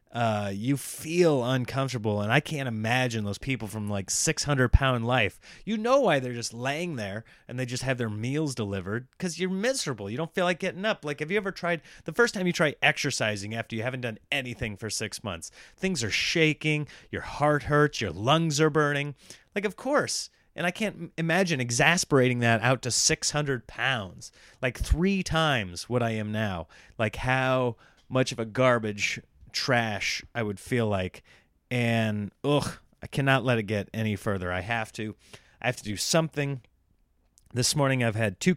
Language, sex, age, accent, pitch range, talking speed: English, male, 30-49, American, 110-165 Hz, 185 wpm